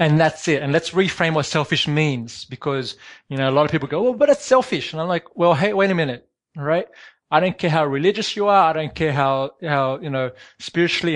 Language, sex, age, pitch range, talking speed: English, male, 20-39, 130-165 Hz, 240 wpm